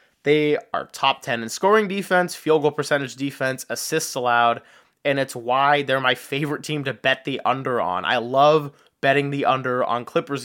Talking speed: 185 wpm